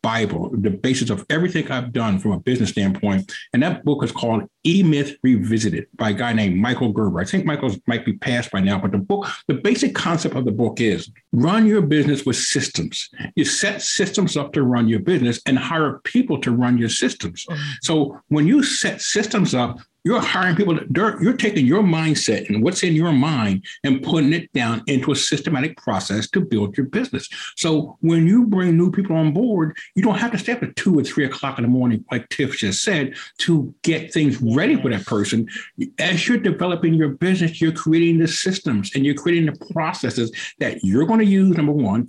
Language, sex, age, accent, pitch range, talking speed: English, male, 60-79, American, 120-180 Hz, 210 wpm